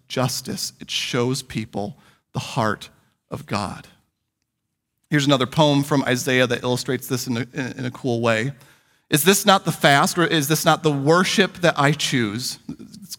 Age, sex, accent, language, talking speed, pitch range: 40-59, male, American, English, 165 wpm, 130-165 Hz